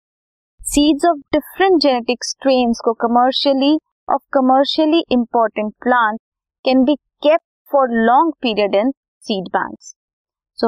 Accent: native